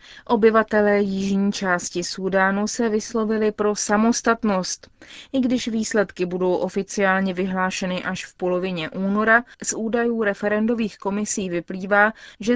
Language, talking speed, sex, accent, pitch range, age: Czech, 115 wpm, female, native, 185-220 Hz, 30-49